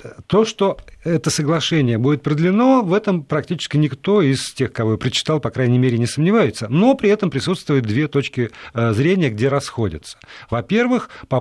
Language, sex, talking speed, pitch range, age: Russian, male, 165 wpm, 110-165 Hz, 40-59